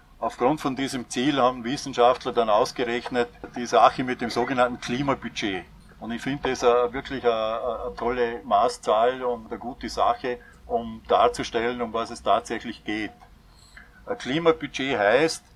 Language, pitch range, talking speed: German, 115-135 Hz, 135 wpm